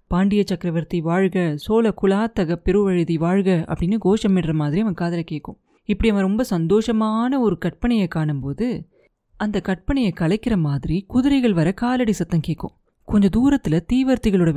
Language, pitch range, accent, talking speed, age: Tamil, 170-225 Hz, native, 130 wpm, 30-49